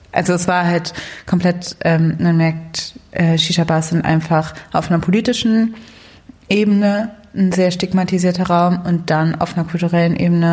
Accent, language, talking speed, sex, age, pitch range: German, German, 150 wpm, female, 20-39, 160-175 Hz